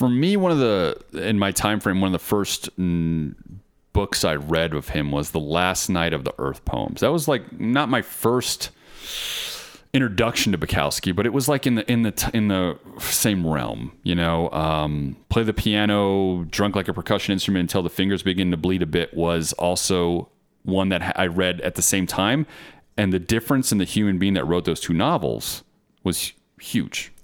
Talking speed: 200 wpm